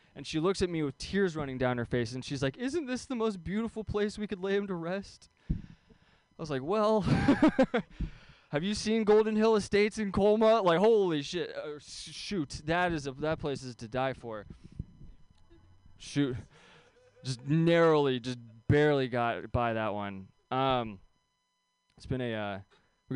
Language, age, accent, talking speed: English, 20-39, American, 175 wpm